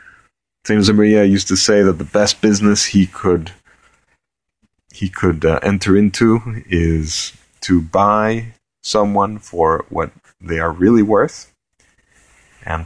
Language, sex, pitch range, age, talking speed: English, male, 85-105 Hz, 30-49, 120 wpm